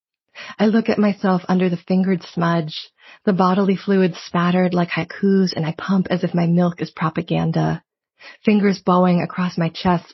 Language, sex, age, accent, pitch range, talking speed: English, female, 30-49, American, 175-195 Hz, 165 wpm